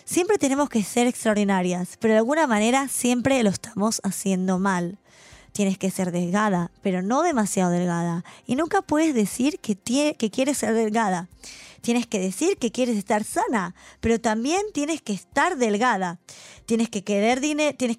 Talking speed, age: 165 wpm, 20-39